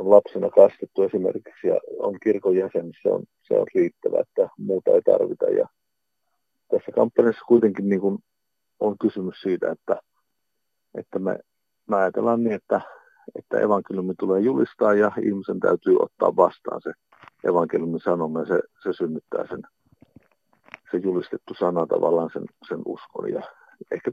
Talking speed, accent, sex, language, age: 145 wpm, native, male, Finnish, 50-69